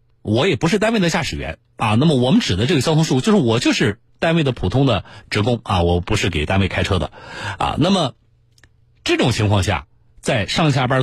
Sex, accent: male, native